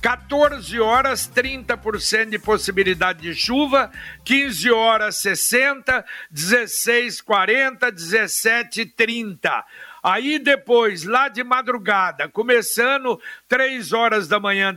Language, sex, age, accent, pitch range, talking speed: Portuguese, male, 60-79, Brazilian, 200-255 Hz, 100 wpm